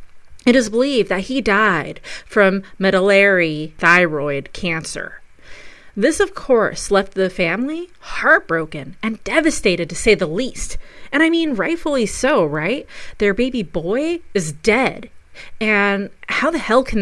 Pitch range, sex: 170-225 Hz, female